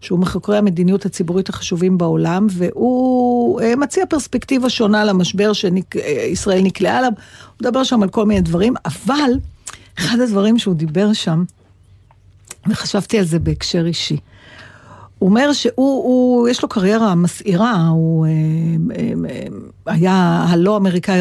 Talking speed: 130 wpm